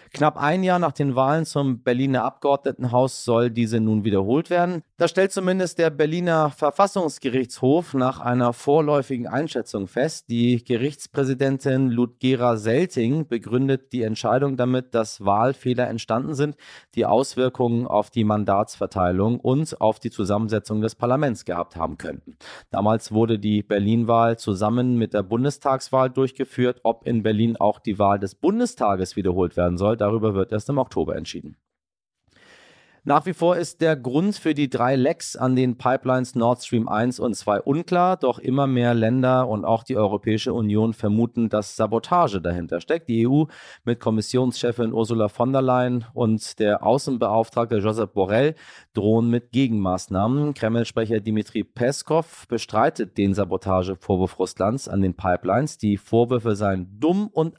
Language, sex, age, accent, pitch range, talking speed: German, male, 30-49, German, 105-135 Hz, 150 wpm